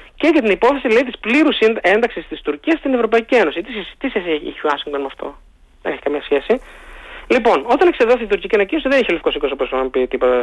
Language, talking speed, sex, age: Greek, 205 wpm, male, 20-39